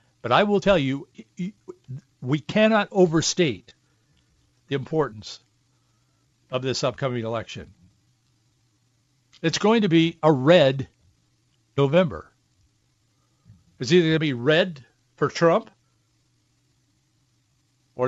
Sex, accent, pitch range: male, American, 125-160 Hz